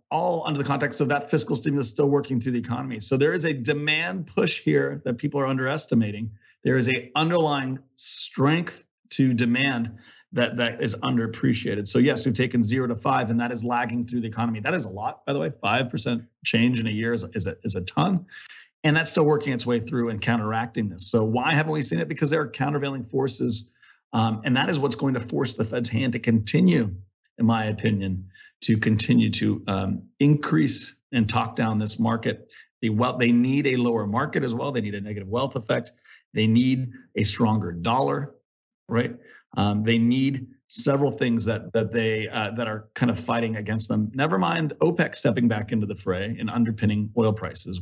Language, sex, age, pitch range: English, male, 30-49, 110-140 Hz